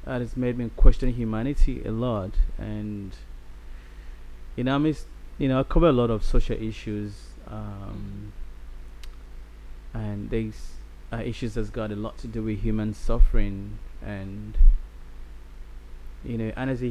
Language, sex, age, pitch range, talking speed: English, male, 20-39, 80-115 Hz, 150 wpm